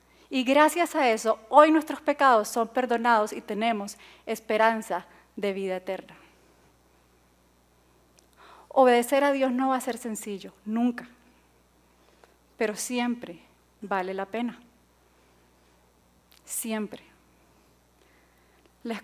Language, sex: Spanish, female